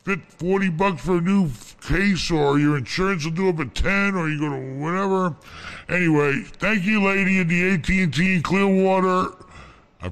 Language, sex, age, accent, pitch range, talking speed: English, female, 60-79, American, 115-165 Hz, 195 wpm